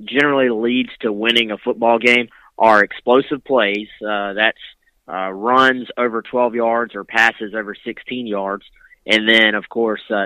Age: 20-39